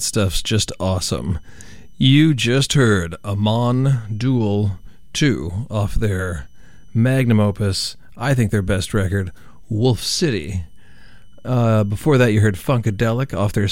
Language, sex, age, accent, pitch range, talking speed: English, male, 40-59, American, 100-120 Hz, 120 wpm